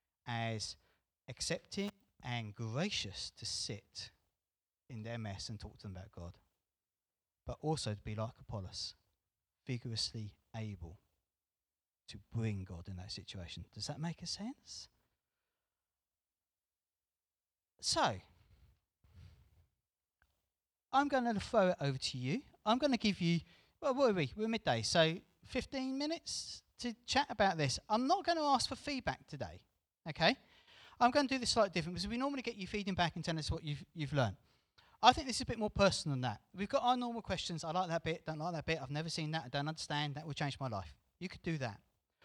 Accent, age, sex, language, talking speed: British, 30-49, male, English, 185 wpm